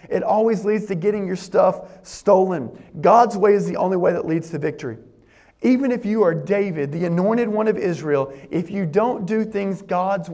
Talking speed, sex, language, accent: 195 wpm, male, English, American